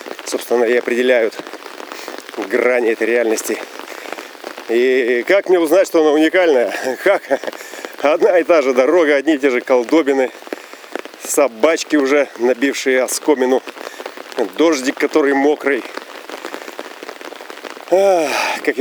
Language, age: Russian, 40-59